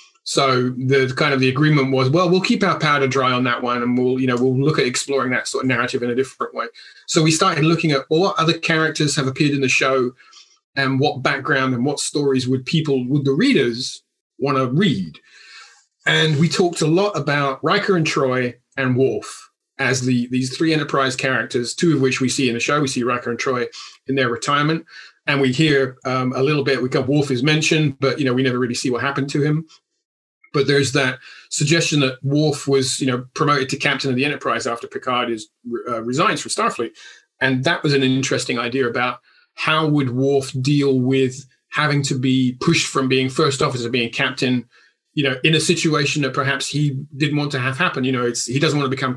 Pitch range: 130-155 Hz